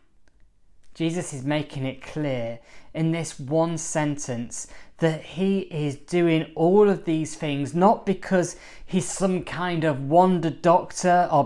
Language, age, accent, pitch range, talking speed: English, 20-39, British, 135-170 Hz, 135 wpm